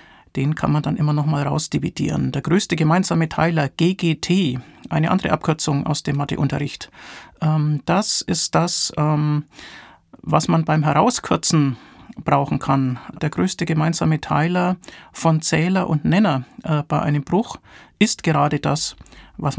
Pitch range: 150-180 Hz